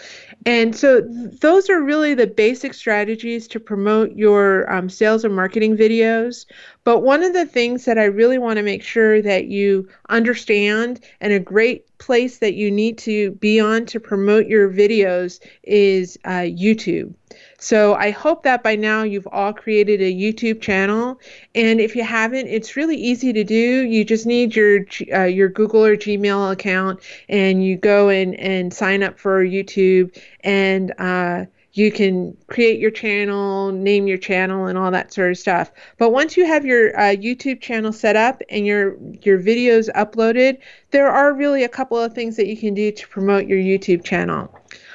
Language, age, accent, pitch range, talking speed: English, 30-49, American, 200-235 Hz, 180 wpm